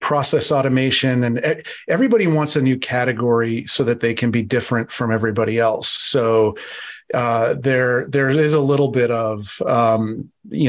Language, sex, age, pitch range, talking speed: English, male, 40-59, 120-140 Hz, 155 wpm